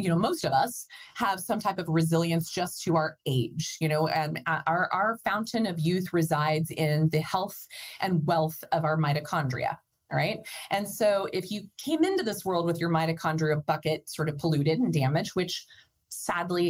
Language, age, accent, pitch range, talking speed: English, 20-39, American, 155-190 Hz, 185 wpm